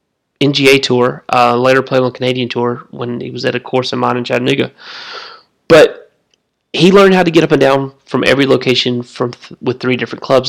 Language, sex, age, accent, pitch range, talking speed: English, male, 30-49, American, 120-135 Hz, 205 wpm